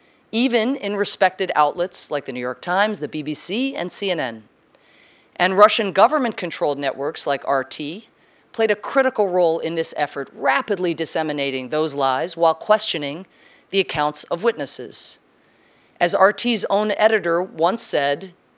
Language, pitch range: English, 155-210 Hz